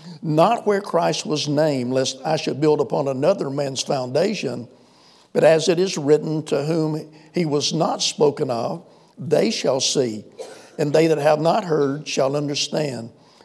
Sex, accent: male, American